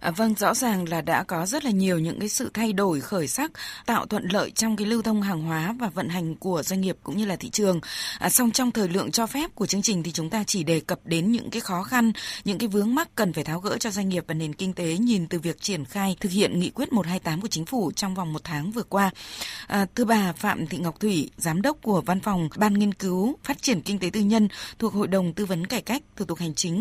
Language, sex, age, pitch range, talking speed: Vietnamese, female, 20-39, 175-230 Hz, 280 wpm